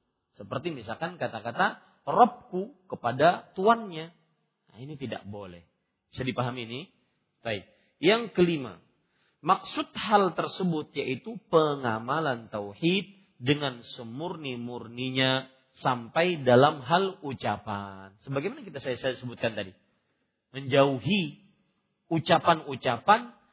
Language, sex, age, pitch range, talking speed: Malay, male, 40-59, 135-220 Hz, 90 wpm